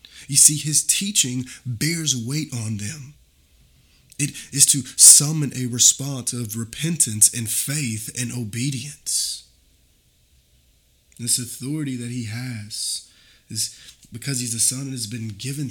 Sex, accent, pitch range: male, American, 110-130 Hz